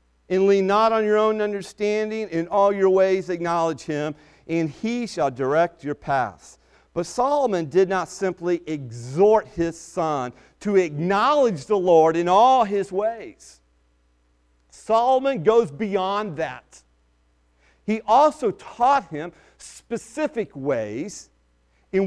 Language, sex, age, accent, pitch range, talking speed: English, male, 50-69, American, 130-195 Hz, 125 wpm